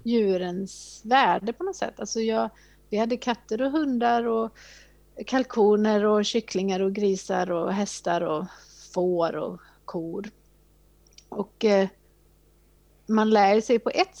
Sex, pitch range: female, 195-230 Hz